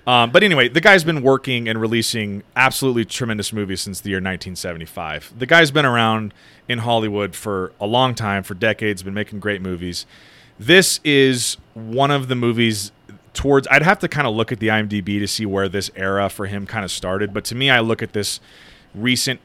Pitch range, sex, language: 100-125 Hz, male, English